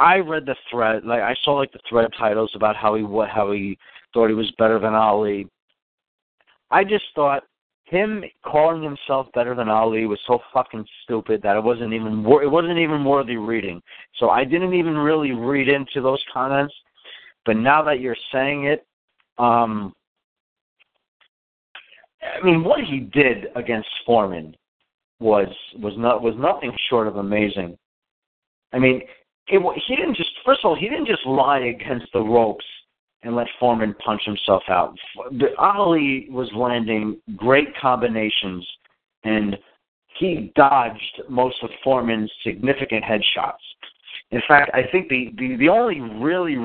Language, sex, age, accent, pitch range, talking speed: English, male, 50-69, American, 110-140 Hz, 155 wpm